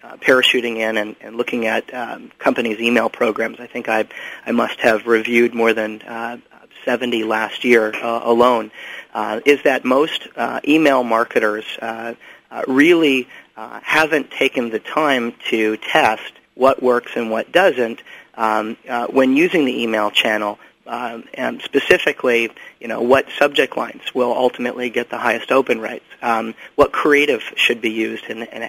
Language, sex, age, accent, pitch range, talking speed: English, male, 40-59, American, 115-125 Hz, 160 wpm